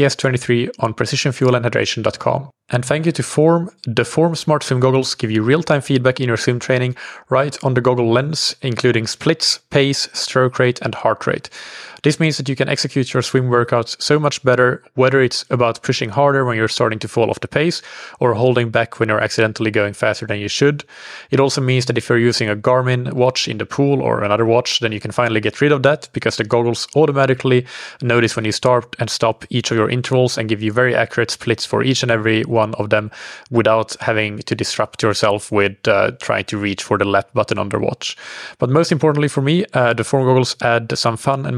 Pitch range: 110-135 Hz